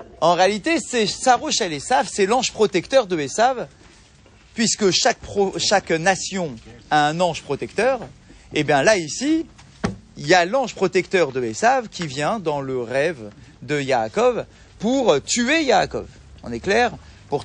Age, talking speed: 40-59, 155 wpm